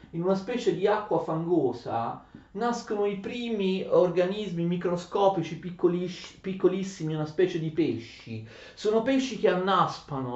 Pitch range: 155-210 Hz